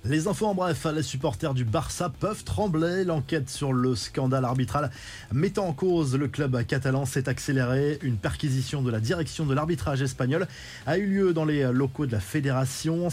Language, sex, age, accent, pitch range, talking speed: French, male, 20-39, French, 125-160 Hz, 185 wpm